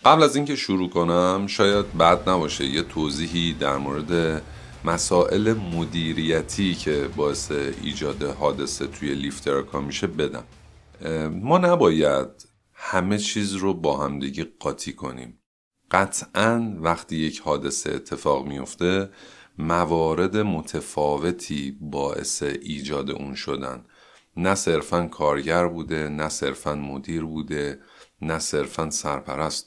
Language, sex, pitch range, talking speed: Persian, male, 75-100 Hz, 110 wpm